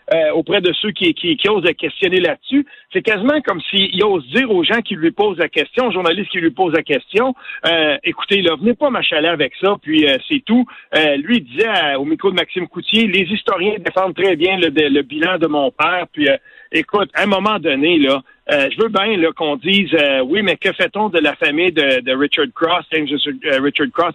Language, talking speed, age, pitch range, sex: French, 240 wpm, 50-69, 165-235 Hz, male